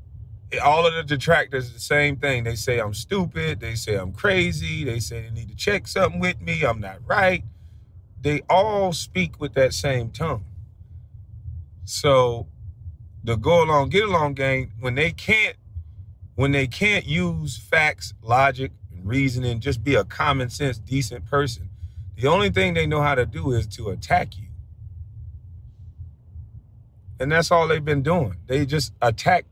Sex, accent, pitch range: male, American, 100-140 Hz